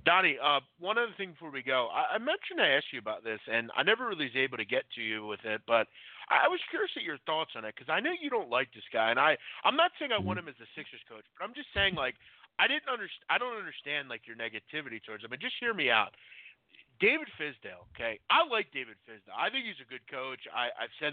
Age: 30-49